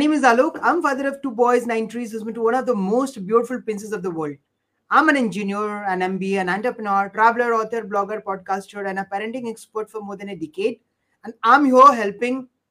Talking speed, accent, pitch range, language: 210 wpm, native, 200-250 Hz, Hindi